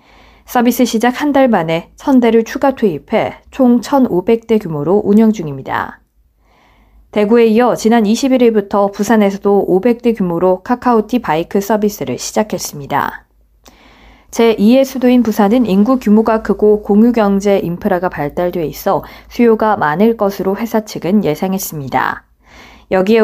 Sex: female